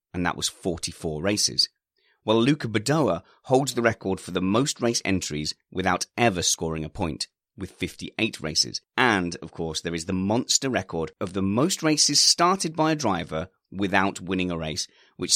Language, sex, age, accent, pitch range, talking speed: English, male, 30-49, British, 85-120 Hz, 175 wpm